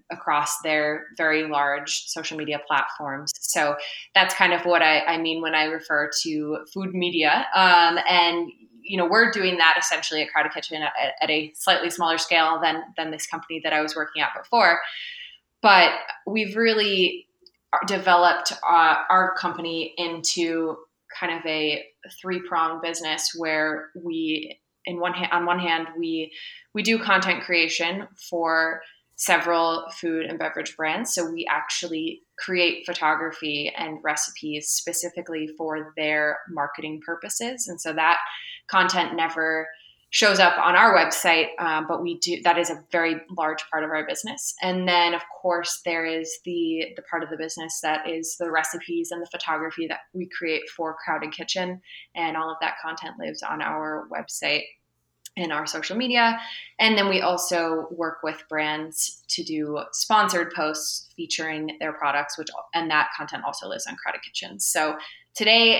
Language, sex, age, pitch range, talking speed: English, female, 20-39, 155-175 Hz, 160 wpm